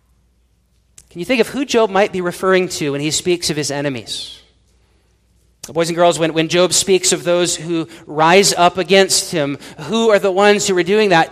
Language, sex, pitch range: English, male, 180-235 Hz